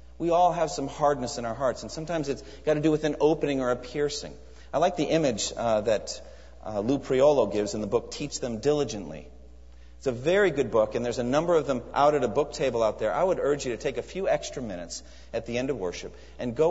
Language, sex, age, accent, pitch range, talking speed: English, male, 40-59, American, 105-155 Hz, 255 wpm